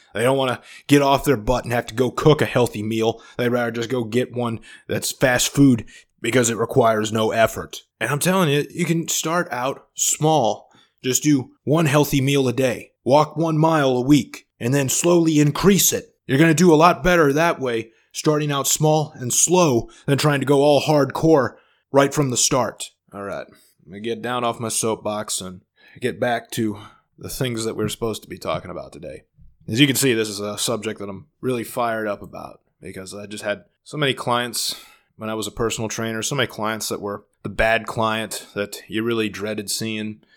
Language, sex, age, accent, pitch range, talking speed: English, male, 20-39, American, 110-140 Hz, 215 wpm